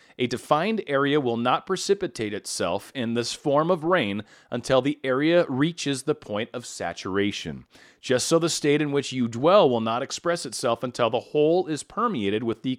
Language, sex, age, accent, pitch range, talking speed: English, male, 40-59, American, 115-170 Hz, 185 wpm